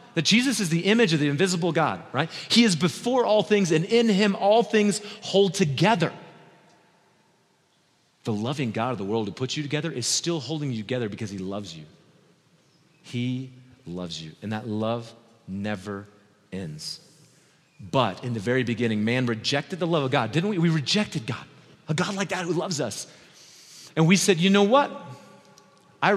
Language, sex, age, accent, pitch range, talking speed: English, male, 40-59, American, 115-170 Hz, 180 wpm